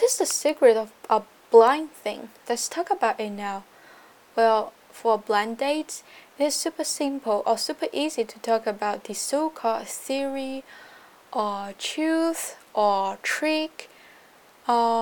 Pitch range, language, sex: 215-280 Hz, Chinese, female